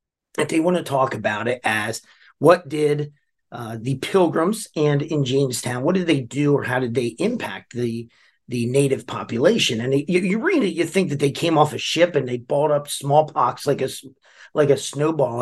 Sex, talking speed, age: male, 205 wpm, 40-59